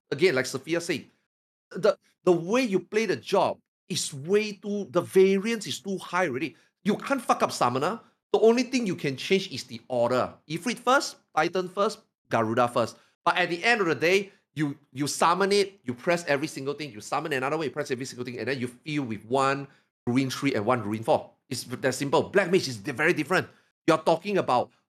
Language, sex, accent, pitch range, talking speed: English, male, Malaysian, 125-180 Hz, 210 wpm